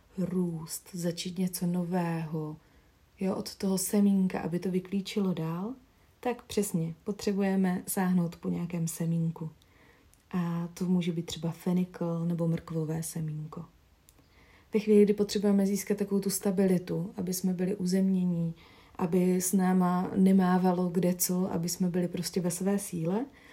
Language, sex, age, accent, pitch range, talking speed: Czech, female, 40-59, native, 165-195 Hz, 135 wpm